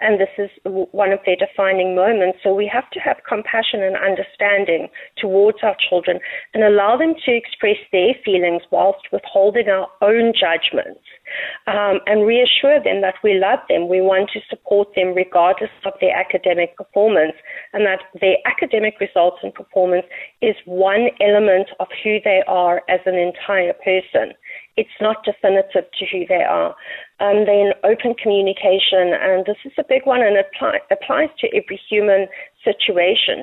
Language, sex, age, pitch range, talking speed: English, female, 40-59, 185-215 Hz, 160 wpm